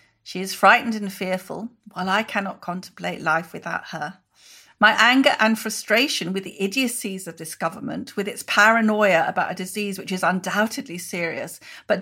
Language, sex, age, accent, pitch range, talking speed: English, female, 40-59, British, 185-220 Hz, 165 wpm